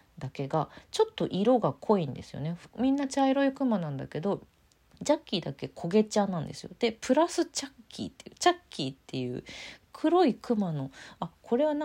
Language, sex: Japanese, female